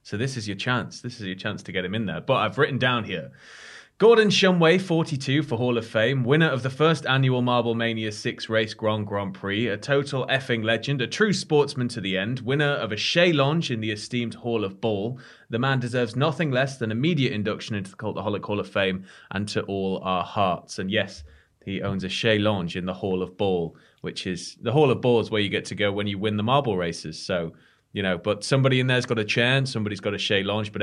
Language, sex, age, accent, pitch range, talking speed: English, male, 20-39, British, 100-135 Hz, 245 wpm